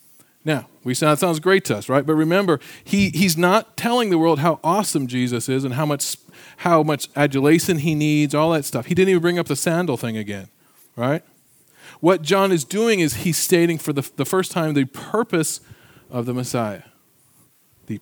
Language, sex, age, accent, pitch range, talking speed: English, male, 40-59, American, 125-165 Hz, 195 wpm